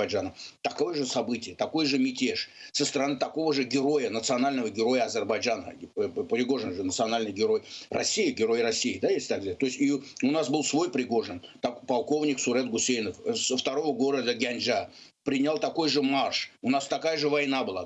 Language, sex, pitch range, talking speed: Ukrainian, male, 125-155 Hz, 160 wpm